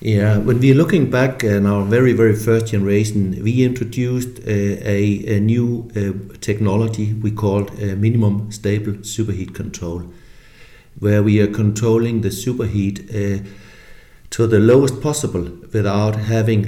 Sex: male